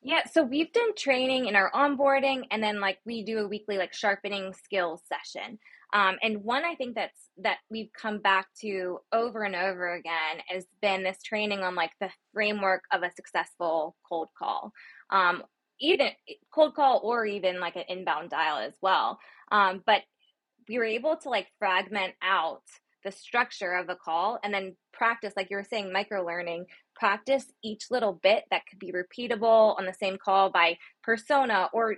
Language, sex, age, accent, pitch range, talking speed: English, female, 20-39, American, 185-230 Hz, 180 wpm